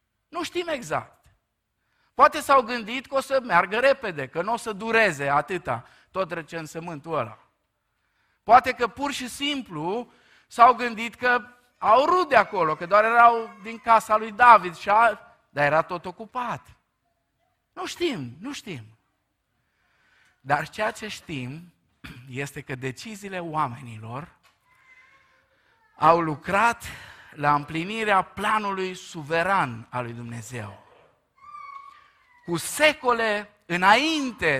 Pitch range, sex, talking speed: 145-230 Hz, male, 120 wpm